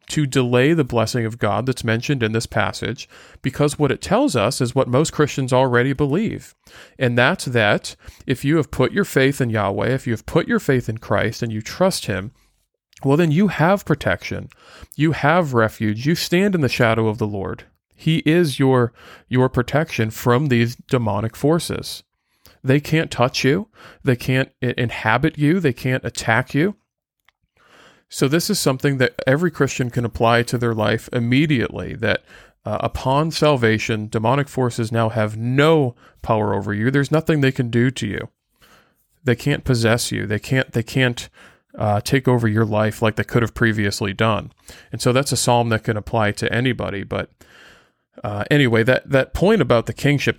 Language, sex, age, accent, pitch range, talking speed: English, male, 40-59, American, 110-140 Hz, 180 wpm